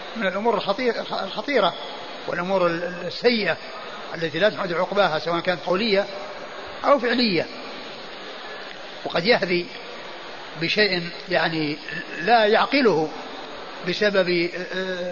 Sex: male